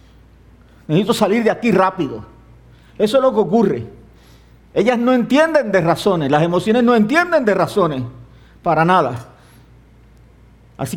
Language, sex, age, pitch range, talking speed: English, male, 50-69, 140-200 Hz, 130 wpm